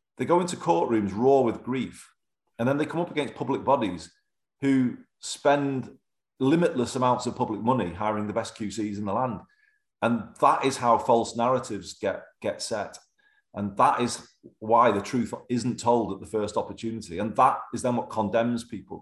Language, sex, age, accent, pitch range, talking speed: English, male, 30-49, British, 100-125 Hz, 180 wpm